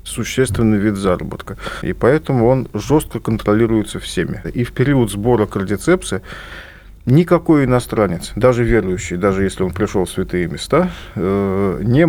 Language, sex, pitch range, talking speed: Russian, male, 105-130 Hz, 130 wpm